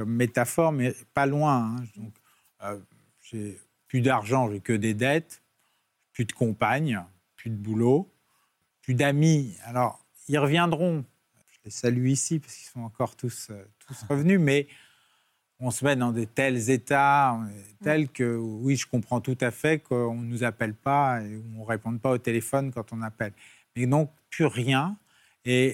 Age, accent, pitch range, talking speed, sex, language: 40-59, French, 110-135 Hz, 170 wpm, male, French